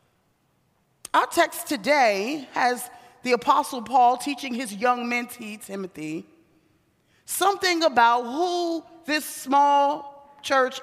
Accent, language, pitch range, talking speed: American, English, 205-310 Hz, 100 wpm